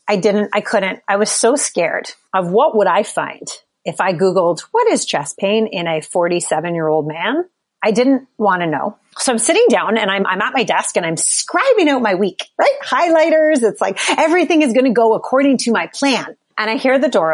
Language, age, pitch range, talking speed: English, 30-49, 190-265 Hz, 220 wpm